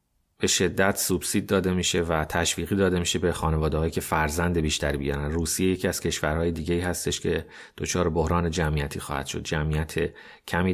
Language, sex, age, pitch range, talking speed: Persian, male, 30-49, 75-95 Hz, 170 wpm